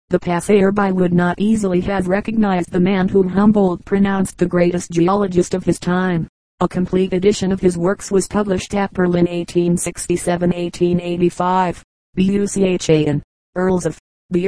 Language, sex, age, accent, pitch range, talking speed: English, female, 40-59, American, 175-195 Hz, 135 wpm